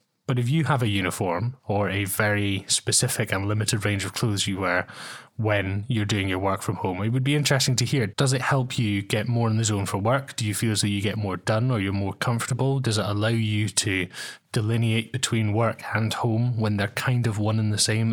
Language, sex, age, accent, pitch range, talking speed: English, male, 20-39, British, 105-125 Hz, 240 wpm